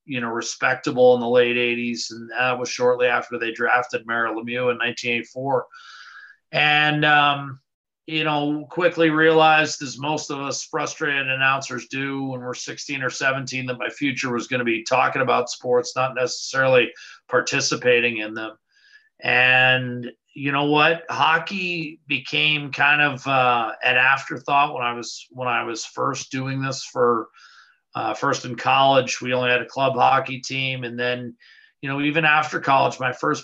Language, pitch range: English, 125-145 Hz